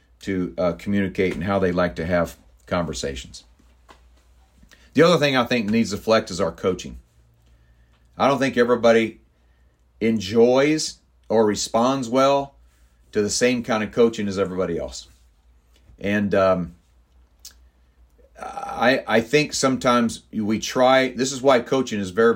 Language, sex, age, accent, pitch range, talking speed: English, male, 40-59, American, 75-120 Hz, 140 wpm